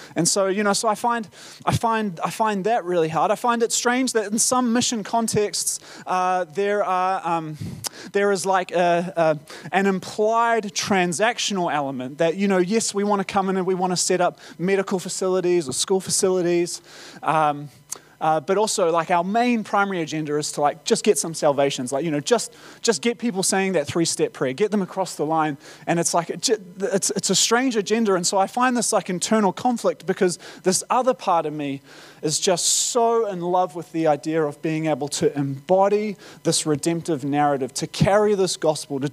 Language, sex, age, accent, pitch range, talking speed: English, male, 20-39, Australian, 160-210 Hz, 200 wpm